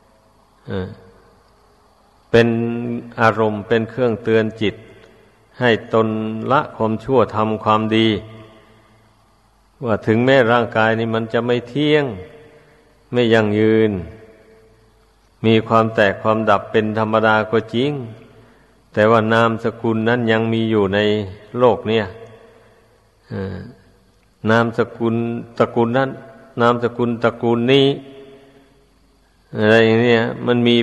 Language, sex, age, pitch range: Thai, male, 60-79, 110-115 Hz